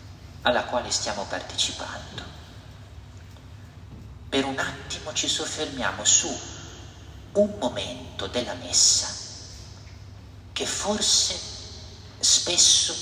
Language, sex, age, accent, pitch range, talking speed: Italian, male, 50-69, native, 90-115 Hz, 80 wpm